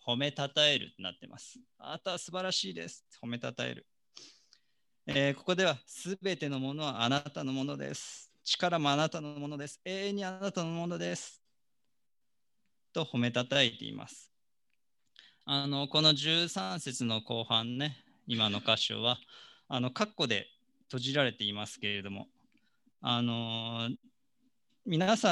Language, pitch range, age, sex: Japanese, 120-175 Hz, 20-39, male